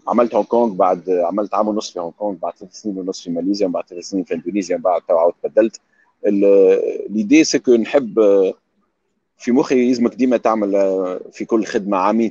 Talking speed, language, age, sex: 180 wpm, Arabic, 40-59, male